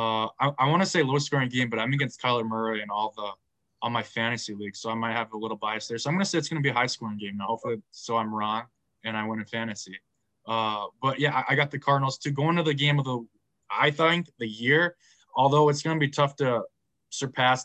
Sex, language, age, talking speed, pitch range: male, English, 20-39, 260 wpm, 115-145 Hz